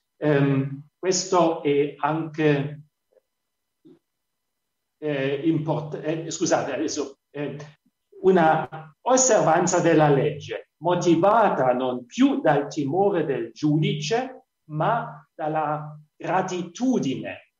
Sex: male